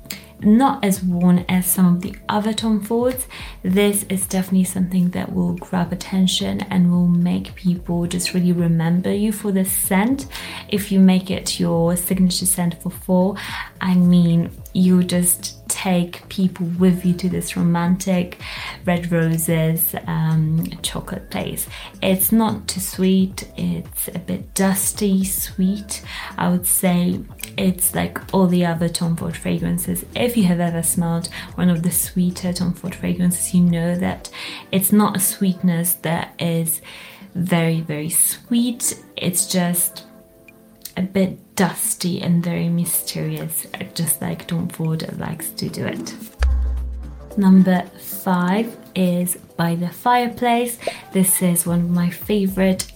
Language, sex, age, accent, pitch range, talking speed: English, female, 20-39, British, 170-190 Hz, 145 wpm